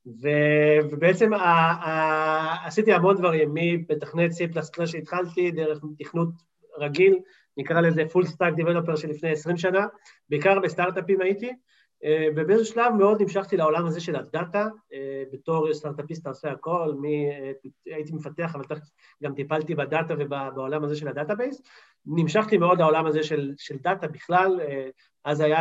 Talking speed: 135 wpm